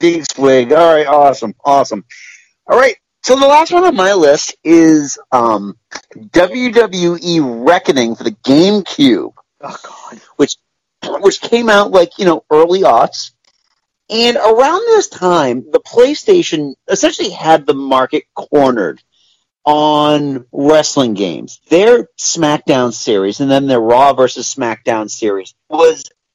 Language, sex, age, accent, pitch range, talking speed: English, male, 50-69, American, 140-235 Hz, 130 wpm